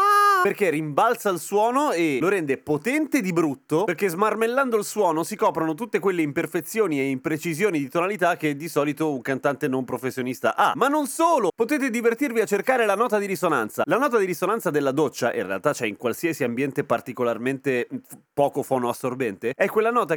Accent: native